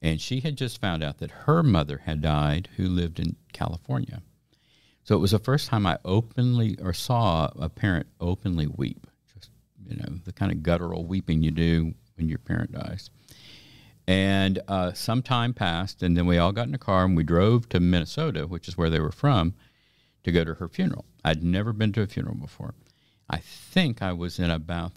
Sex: male